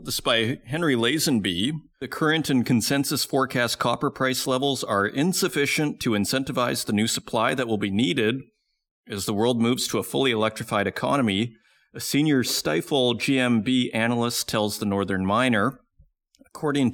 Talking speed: 150 wpm